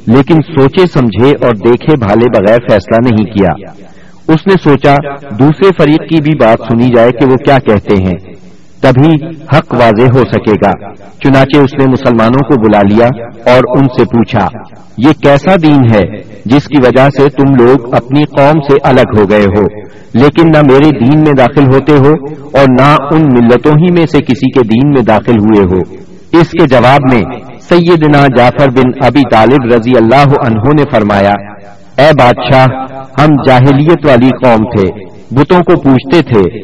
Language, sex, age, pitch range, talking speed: Urdu, male, 50-69, 115-145 Hz, 175 wpm